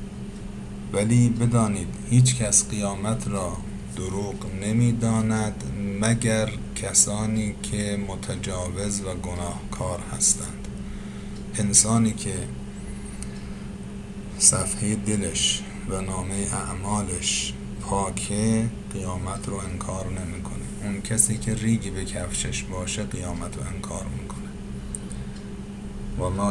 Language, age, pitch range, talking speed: Persian, 50-69, 95-110 Hz, 85 wpm